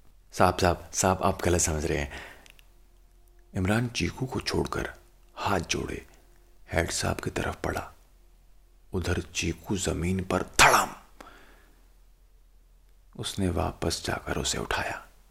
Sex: male